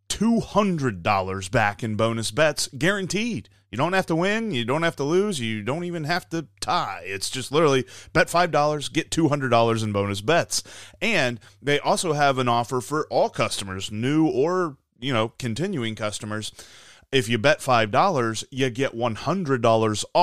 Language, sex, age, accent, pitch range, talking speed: English, male, 30-49, American, 110-150 Hz, 155 wpm